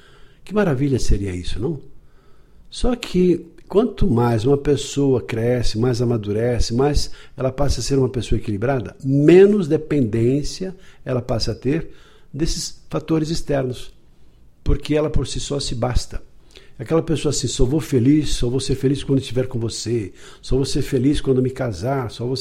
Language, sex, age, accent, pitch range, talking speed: Portuguese, male, 60-79, Brazilian, 120-150 Hz, 165 wpm